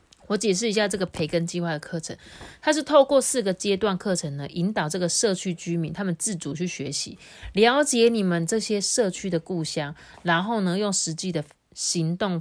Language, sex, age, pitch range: Chinese, female, 30-49, 155-205 Hz